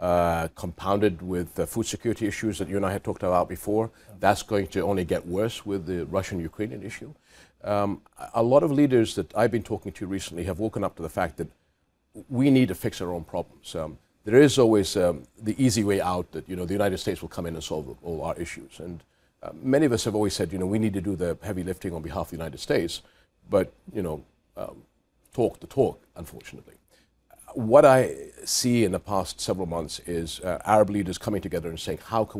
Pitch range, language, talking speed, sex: 85-105 Hz, English, 225 wpm, male